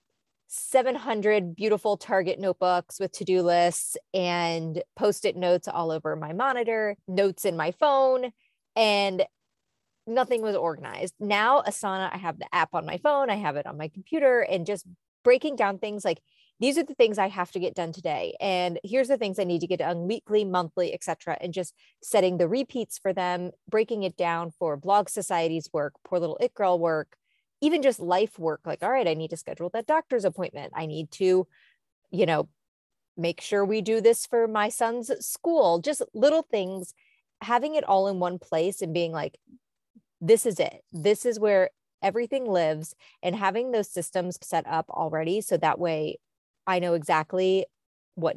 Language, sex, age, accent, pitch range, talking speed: English, female, 30-49, American, 170-225 Hz, 180 wpm